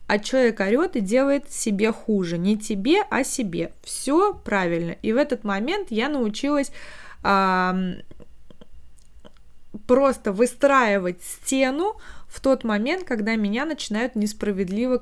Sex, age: female, 20-39